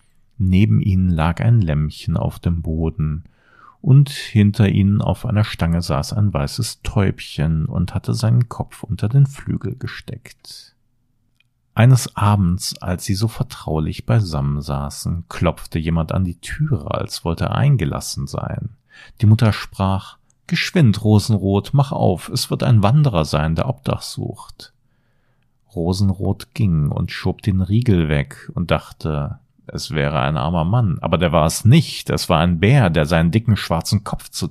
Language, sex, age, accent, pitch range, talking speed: German, male, 40-59, German, 90-120 Hz, 155 wpm